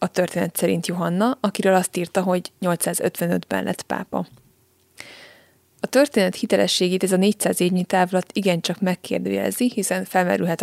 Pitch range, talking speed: 180-200 Hz, 130 wpm